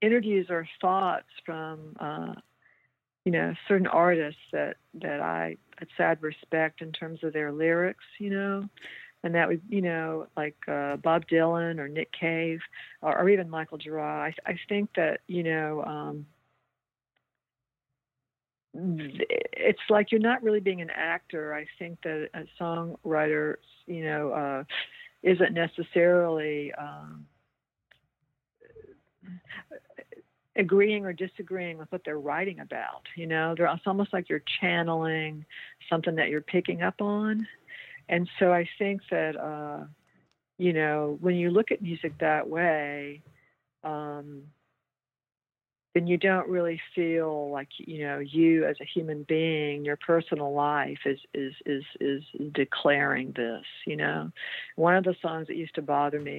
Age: 50-69